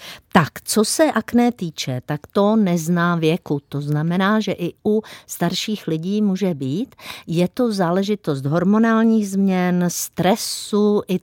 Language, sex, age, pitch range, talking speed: Czech, female, 50-69, 155-200 Hz, 135 wpm